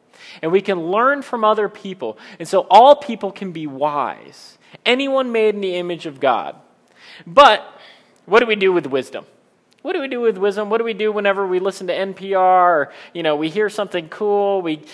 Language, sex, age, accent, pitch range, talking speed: English, male, 30-49, American, 170-220 Hz, 205 wpm